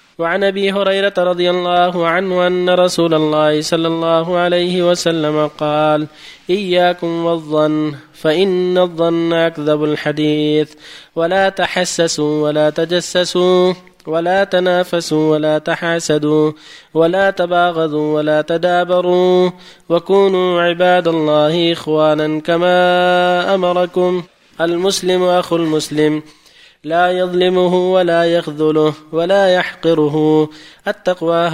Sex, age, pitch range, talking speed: male, 20-39, 155-180 Hz, 90 wpm